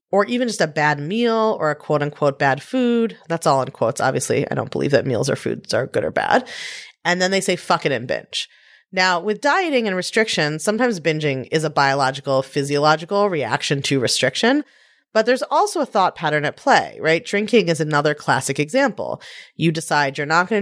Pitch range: 150-225 Hz